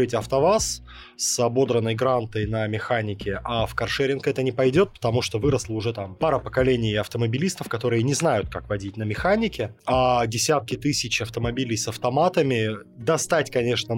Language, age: Russian, 20-39